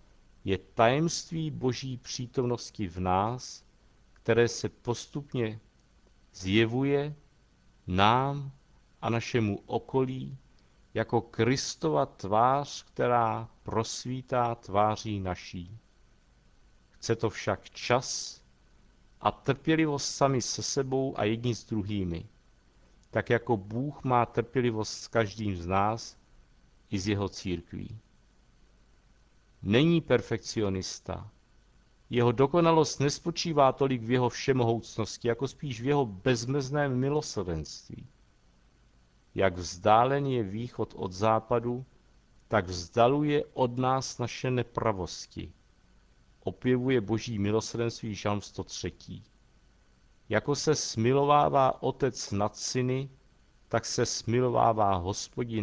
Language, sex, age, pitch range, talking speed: Czech, male, 50-69, 100-130 Hz, 95 wpm